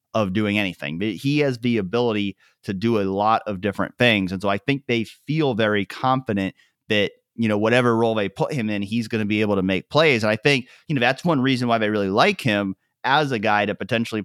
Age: 30-49